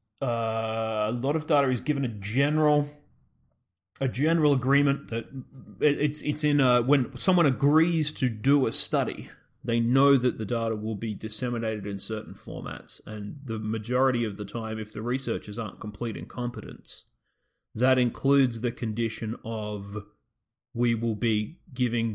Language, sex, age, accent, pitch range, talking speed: English, male, 30-49, Australian, 115-145 Hz, 150 wpm